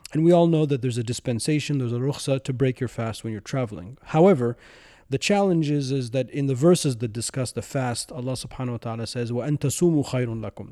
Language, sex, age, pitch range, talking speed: English, male, 30-49, 120-150 Hz, 225 wpm